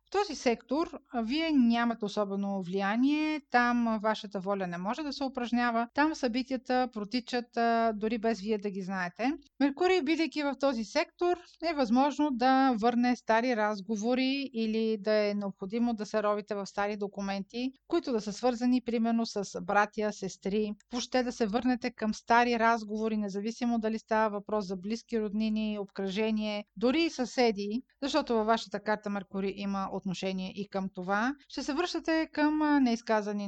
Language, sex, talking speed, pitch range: Bulgarian, female, 155 wpm, 200-255 Hz